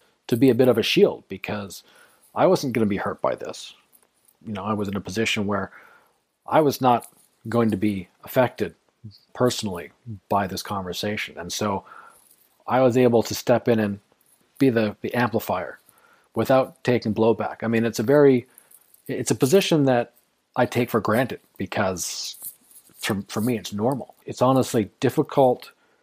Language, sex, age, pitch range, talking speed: English, male, 40-59, 105-130 Hz, 170 wpm